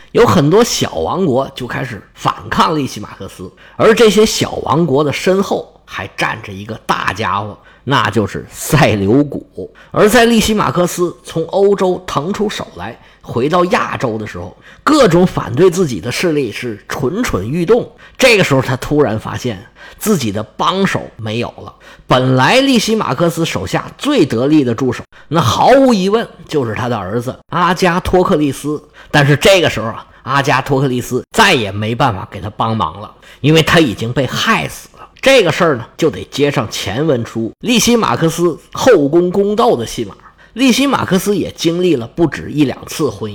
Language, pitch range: Chinese, 125-185 Hz